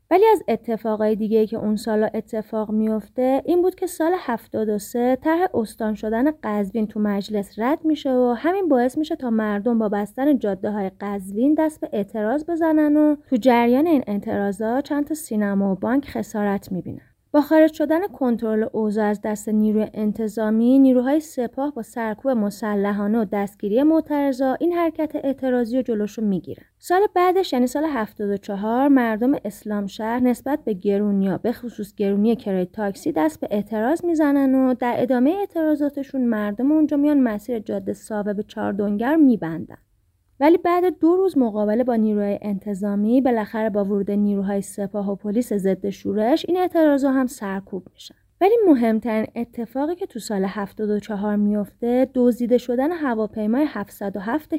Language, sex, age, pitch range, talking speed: Persian, female, 30-49, 210-285 Hz, 155 wpm